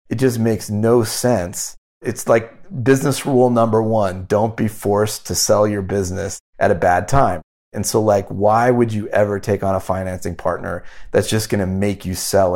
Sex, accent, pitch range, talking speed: male, American, 95-115 Hz, 190 wpm